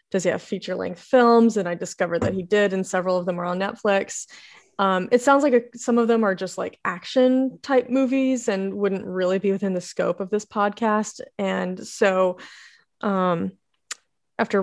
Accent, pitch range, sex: American, 185-220 Hz, female